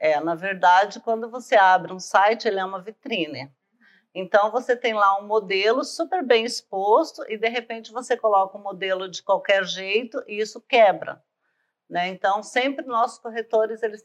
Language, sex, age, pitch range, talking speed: Portuguese, female, 50-69, 185-230 Hz, 170 wpm